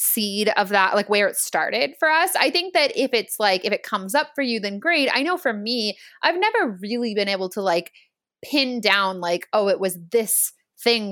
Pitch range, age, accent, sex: 190-245 Hz, 20-39, American, female